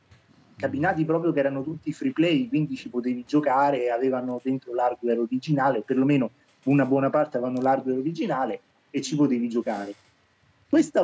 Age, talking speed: 30-49, 150 wpm